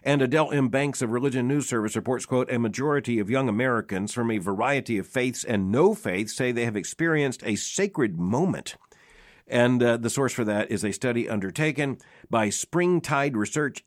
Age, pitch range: 60-79, 105-140 Hz